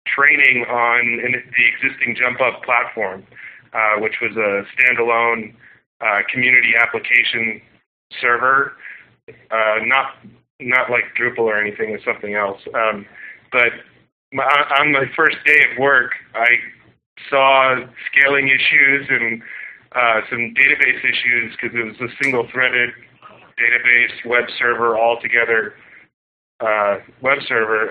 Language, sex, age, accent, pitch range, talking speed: English, male, 30-49, American, 115-140 Hz, 125 wpm